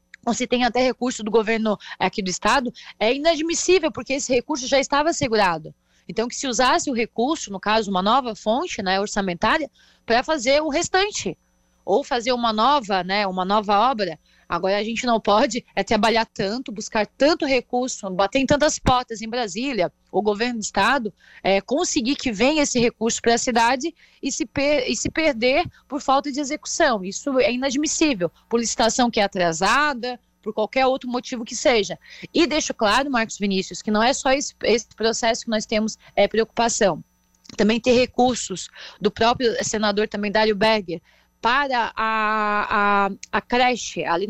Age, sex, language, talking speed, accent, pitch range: 20-39, female, Portuguese, 175 wpm, Brazilian, 205-260 Hz